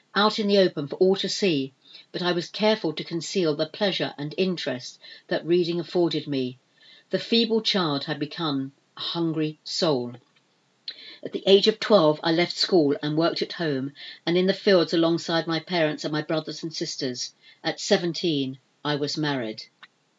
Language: English